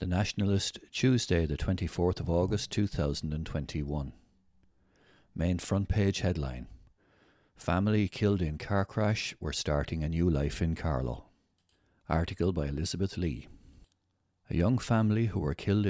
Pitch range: 80-100 Hz